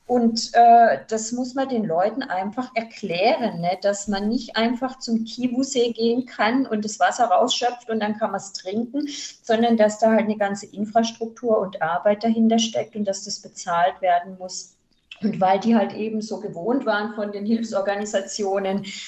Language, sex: German, female